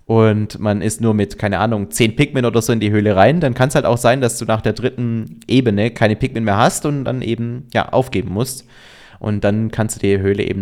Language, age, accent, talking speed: German, 20-39, German, 250 wpm